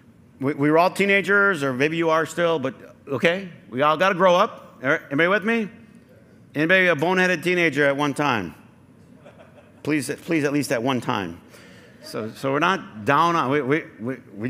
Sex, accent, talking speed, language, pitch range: male, American, 180 wpm, English, 135-190 Hz